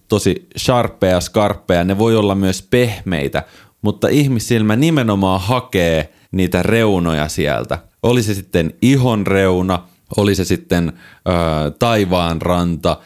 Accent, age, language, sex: native, 30-49, Finnish, male